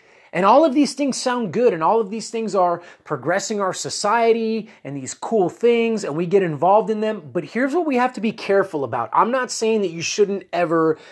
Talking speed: 225 wpm